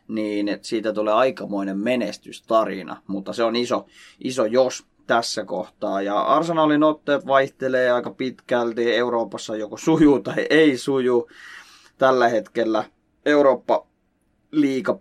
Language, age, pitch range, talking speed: Finnish, 20-39, 110-135 Hz, 120 wpm